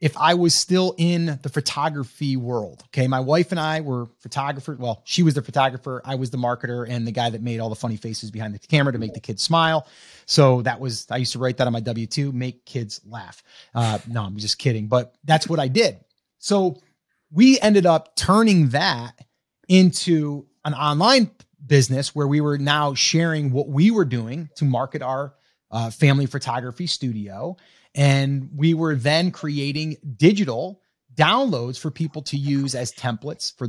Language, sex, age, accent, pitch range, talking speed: English, male, 30-49, American, 125-170 Hz, 185 wpm